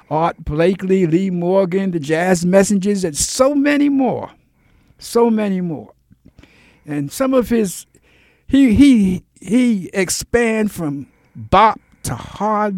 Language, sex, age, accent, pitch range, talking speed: English, male, 60-79, American, 140-205 Hz, 120 wpm